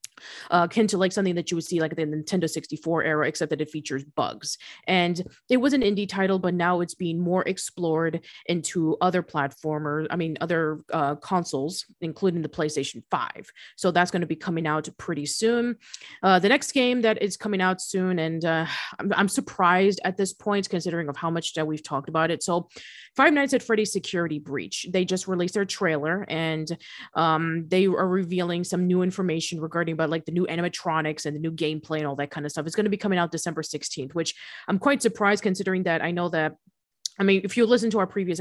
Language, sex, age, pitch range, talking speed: English, female, 30-49, 155-190 Hz, 220 wpm